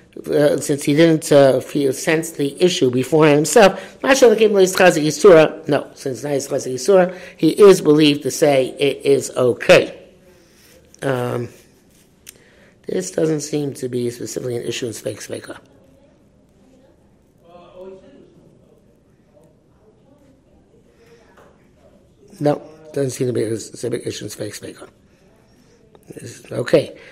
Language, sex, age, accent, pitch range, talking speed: English, male, 60-79, American, 135-170 Hz, 95 wpm